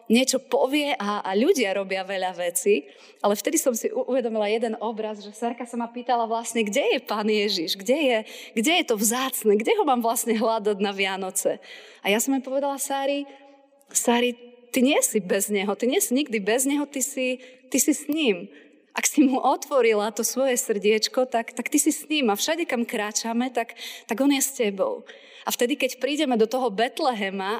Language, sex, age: Slovak, female, 30-49